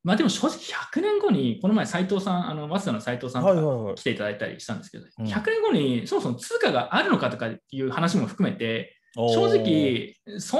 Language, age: Japanese, 20-39